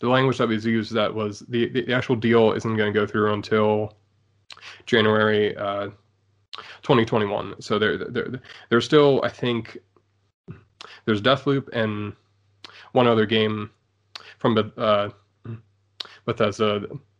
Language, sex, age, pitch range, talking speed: English, male, 20-39, 105-115 Hz, 130 wpm